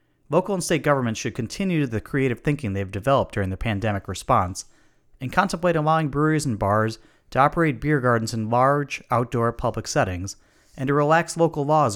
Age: 30-49